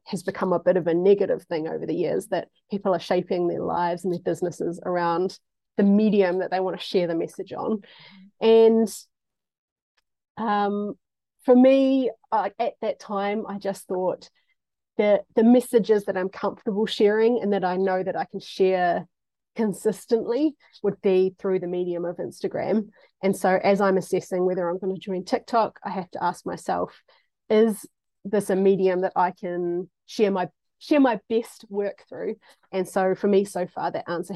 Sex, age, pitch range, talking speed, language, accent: female, 30-49, 185-220 Hz, 180 wpm, English, Australian